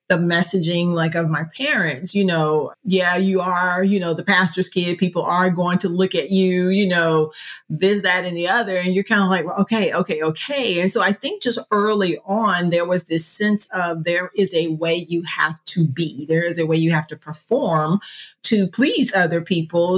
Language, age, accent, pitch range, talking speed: English, 40-59, American, 160-185 Hz, 215 wpm